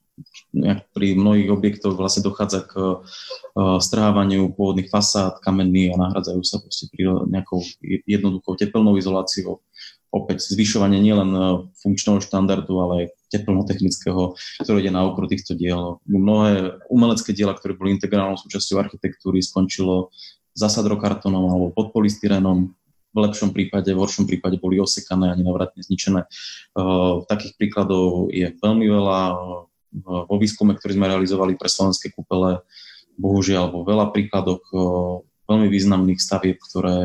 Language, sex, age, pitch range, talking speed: Slovak, male, 20-39, 90-105 Hz, 130 wpm